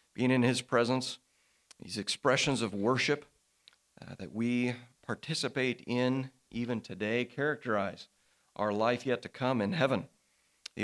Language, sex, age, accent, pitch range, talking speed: English, male, 40-59, American, 105-130 Hz, 135 wpm